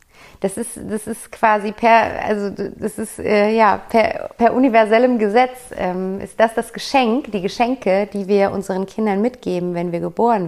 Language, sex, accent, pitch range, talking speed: German, female, German, 200-245 Hz, 160 wpm